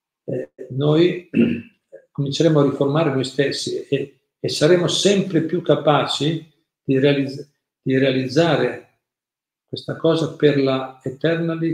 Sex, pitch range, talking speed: male, 130-155 Hz, 110 wpm